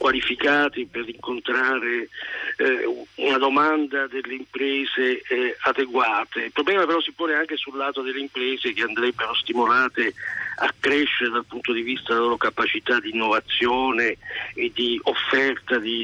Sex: male